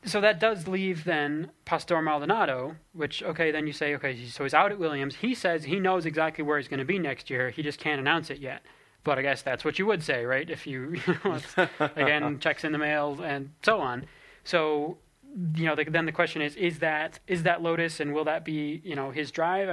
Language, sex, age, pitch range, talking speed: English, male, 20-39, 145-170 Hz, 230 wpm